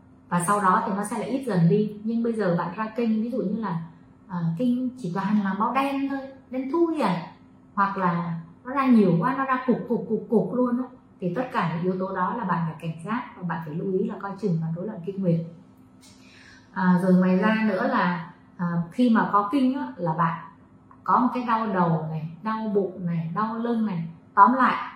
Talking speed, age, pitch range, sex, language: 235 wpm, 30-49, 175-230 Hz, female, Vietnamese